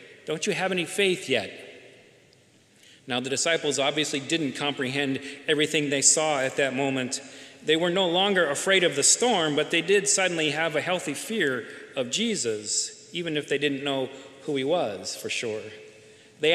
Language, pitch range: English, 140-185 Hz